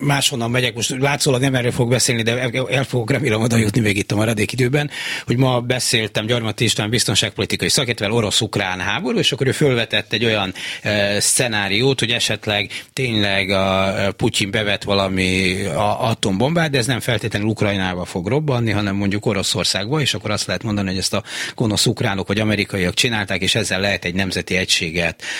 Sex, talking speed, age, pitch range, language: male, 180 wpm, 30-49, 100-125 Hz, Hungarian